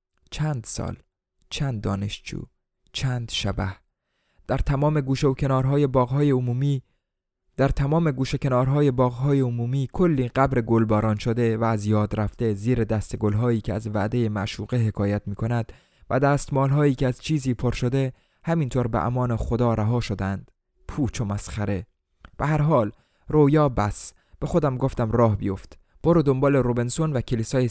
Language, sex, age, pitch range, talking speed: Persian, male, 20-39, 110-135 Hz, 145 wpm